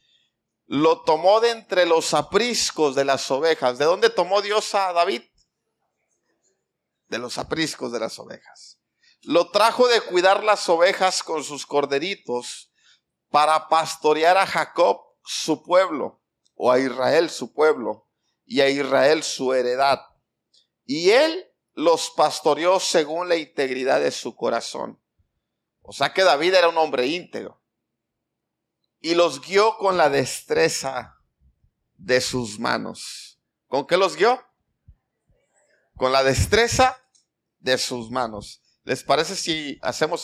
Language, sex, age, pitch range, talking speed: Spanish, male, 50-69, 130-185 Hz, 130 wpm